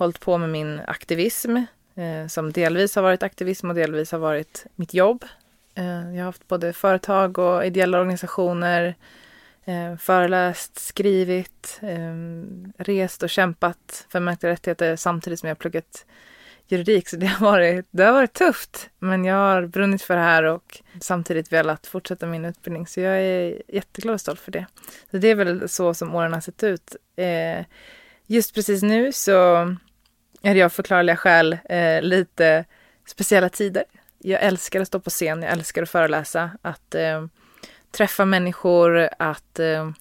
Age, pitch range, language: 20-39, 170-195 Hz, English